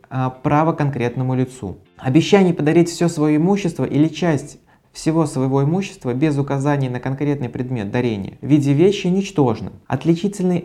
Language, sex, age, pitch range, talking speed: Russian, male, 20-39, 130-165 Hz, 135 wpm